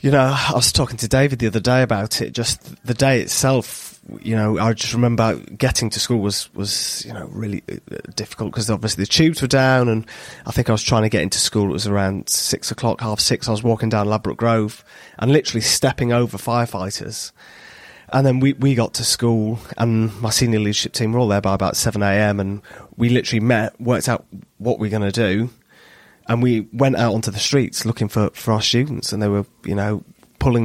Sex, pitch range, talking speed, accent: male, 105-125 Hz, 220 wpm, British